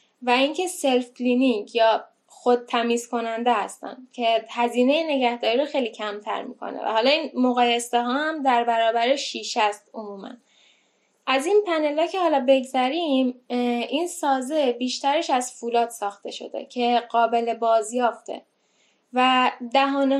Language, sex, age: Persian, female, 10-29